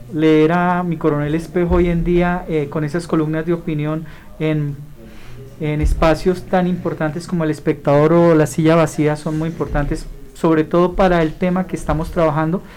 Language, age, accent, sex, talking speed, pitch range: Spanish, 40-59, Colombian, male, 175 wpm, 160-185 Hz